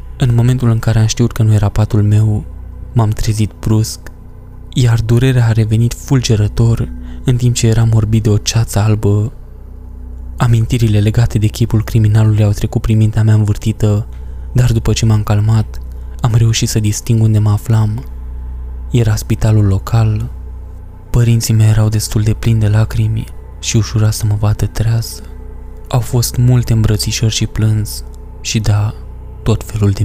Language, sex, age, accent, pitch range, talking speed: Romanian, male, 20-39, native, 100-115 Hz, 160 wpm